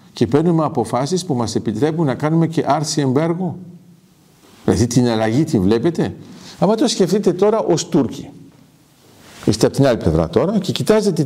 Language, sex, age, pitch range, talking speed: Greek, male, 50-69, 120-175 Hz, 160 wpm